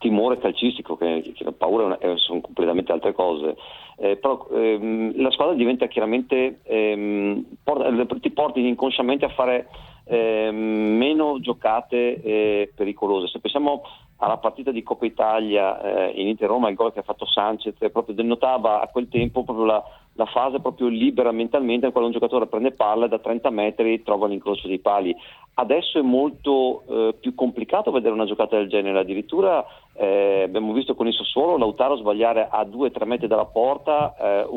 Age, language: 40-59, Italian